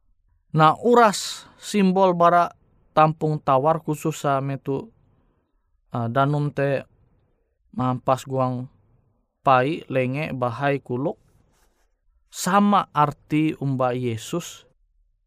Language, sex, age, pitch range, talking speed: Indonesian, male, 20-39, 120-155 Hz, 85 wpm